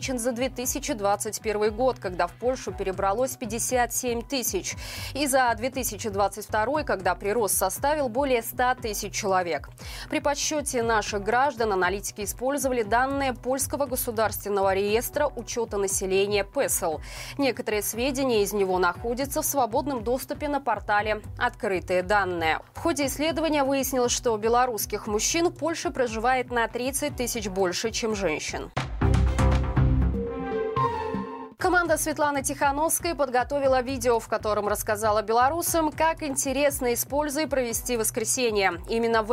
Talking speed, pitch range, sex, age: 115 wpm, 210-270 Hz, female, 20-39